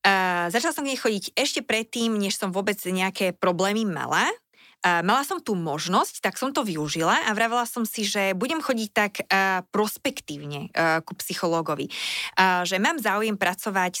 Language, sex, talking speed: Slovak, female, 170 wpm